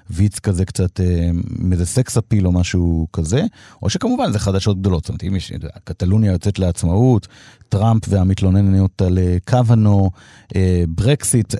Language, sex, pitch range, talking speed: Hebrew, male, 95-110 Hz, 145 wpm